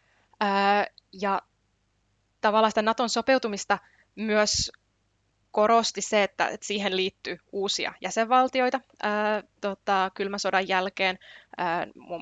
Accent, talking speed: native, 85 wpm